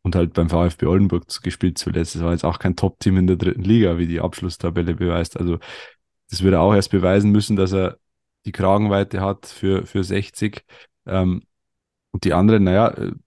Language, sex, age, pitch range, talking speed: German, male, 30-49, 90-105 Hz, 190 wpm